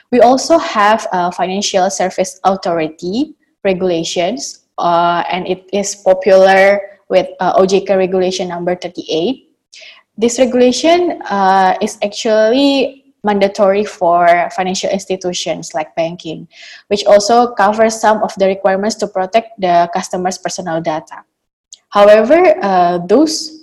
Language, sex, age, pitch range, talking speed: English, female, 20-39, 185-220 Hz, 115 wpm